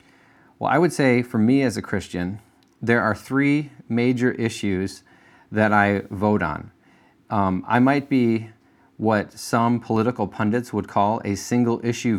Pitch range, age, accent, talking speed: 100-120 Hz, 40-59, American, 150 wpm